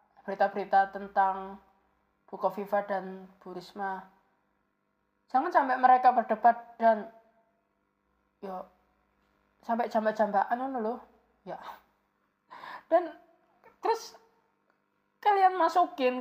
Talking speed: 75 wpm